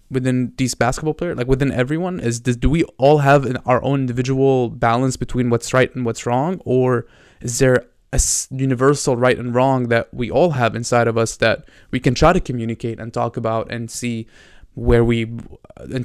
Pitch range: 115-130 Hz